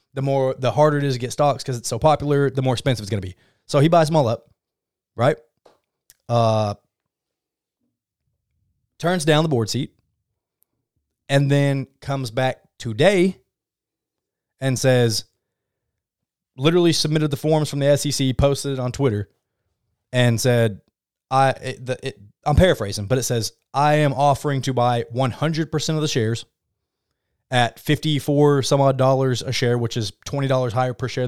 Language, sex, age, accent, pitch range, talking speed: English, male, 20-39, American, 115-140 Hz, 160 wpm